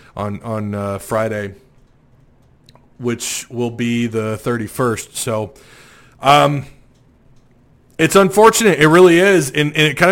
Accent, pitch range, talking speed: American, 125-155 Hz, 120 wpm